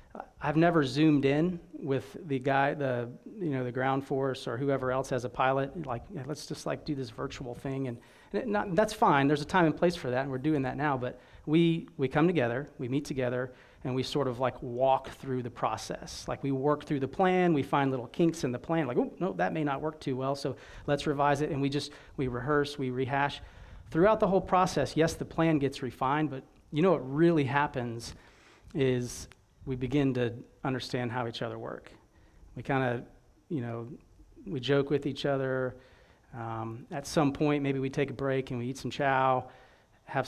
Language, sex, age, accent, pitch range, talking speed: English, male, 40-59, American, 130-150 Hz, 215 wpm